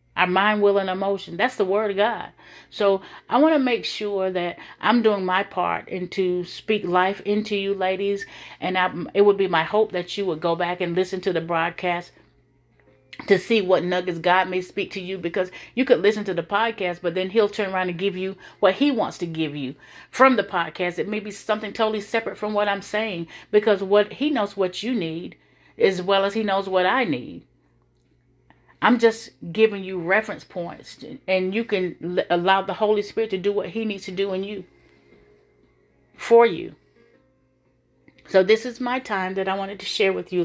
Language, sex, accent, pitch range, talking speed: English, female, American, 175-210 Hz, 205 wpm